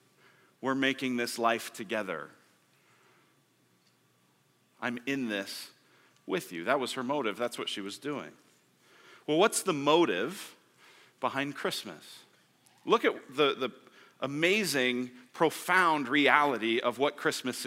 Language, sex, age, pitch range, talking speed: English, male, 40-59, 120-150 Hz, 120 wpm